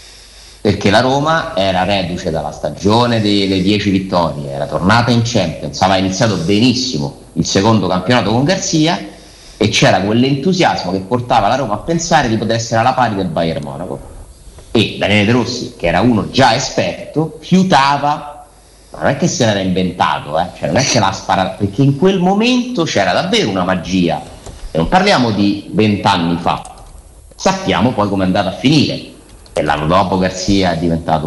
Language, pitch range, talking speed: Italian, 90-135 Hz, 175 wpm